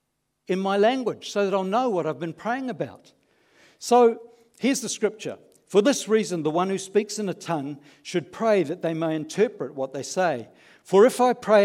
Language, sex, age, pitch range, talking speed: English, male, 60-79, 170-225 Hz, 200 wpm